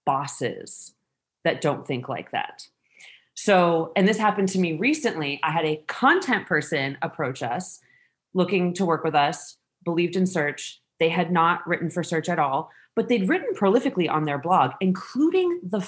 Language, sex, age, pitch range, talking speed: English, female, 30-49, 160-230 Hz, 170 wpm